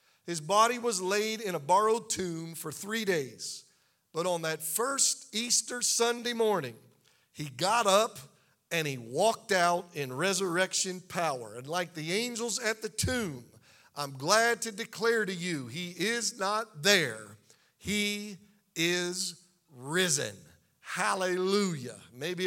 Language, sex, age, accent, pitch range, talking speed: English, male, 50-69, American, 170-225 Hz, 135 wpm